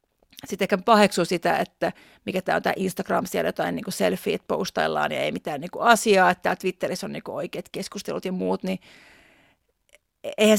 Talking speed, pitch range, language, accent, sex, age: 155 wpm, 180-220 Hz, Finnish, native, female, 30-49